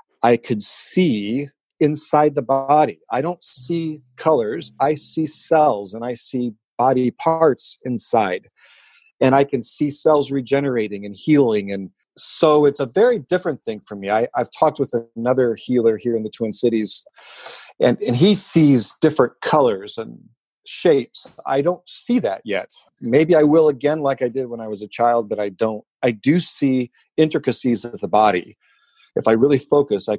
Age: 40-59